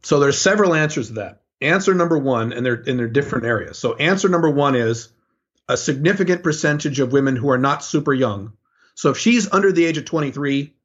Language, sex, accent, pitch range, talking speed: English, male, American, 125-155 Hz, 210 wpm